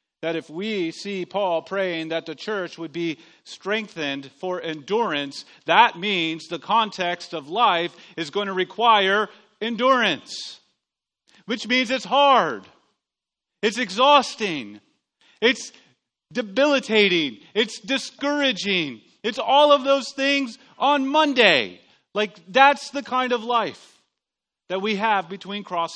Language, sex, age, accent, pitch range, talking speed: English, male, 40-59, American, 180-250 Hz, 125 wpm